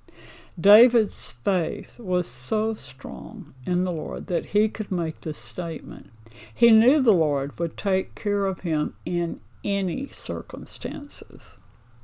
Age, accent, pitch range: 60-79, American, 155-200 Hz